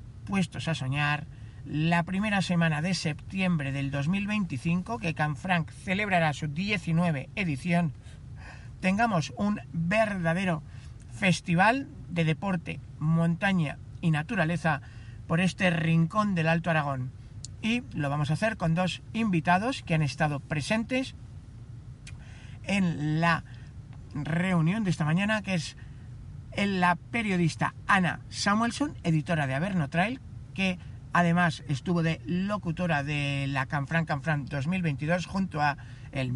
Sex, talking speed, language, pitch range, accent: male, 120 wpm, Spanish, 135-180 Hz, Spanish